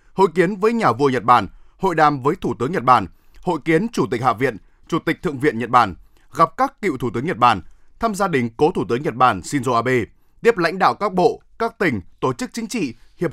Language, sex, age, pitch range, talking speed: Vietnamese, male, 20-39, 125-190 Hz, 250 wpm